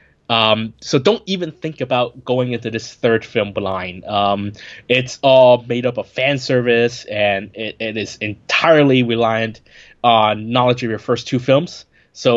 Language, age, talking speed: English, 20-39, 165 wpm